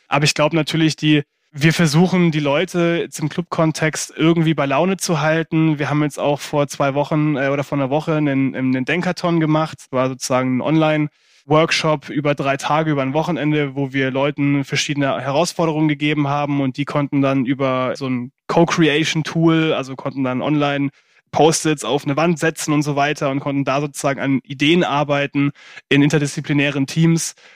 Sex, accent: male, German